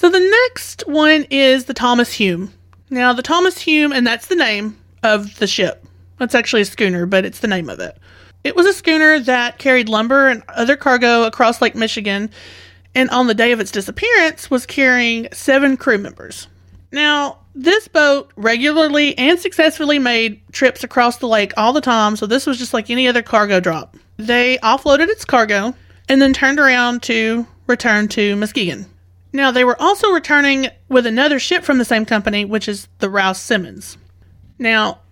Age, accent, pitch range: 30-49, American, 205-280 Hz